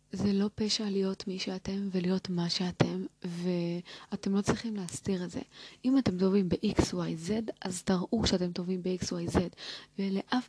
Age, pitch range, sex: 20-39, 180-225 Hz, female